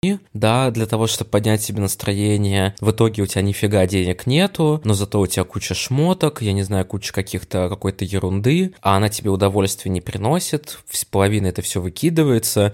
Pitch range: 100-125 Hz